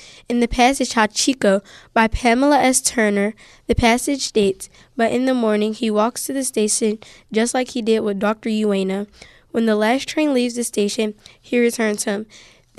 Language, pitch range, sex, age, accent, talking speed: English, 210-245 Hz, female, 10-29, American, 175 wpm